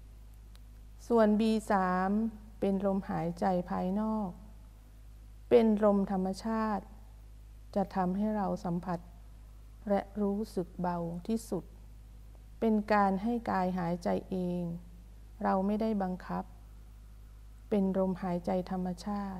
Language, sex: Thai, female